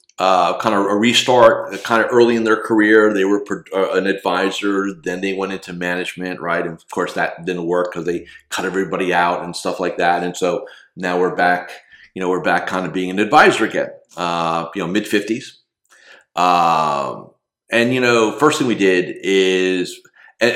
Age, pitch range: 40-59, 90-120 Hz